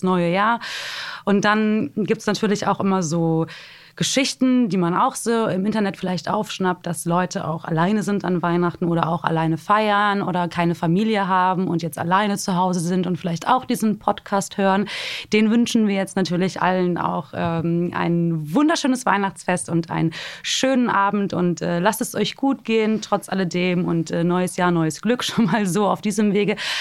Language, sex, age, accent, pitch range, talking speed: German, female, 20-39, German, 180-220 Hz, 185 wpm